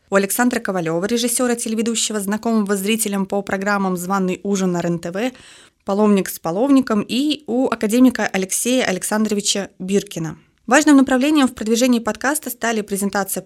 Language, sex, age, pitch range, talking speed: Russian, female, 20-39, 190-240 Hz, 130 wpm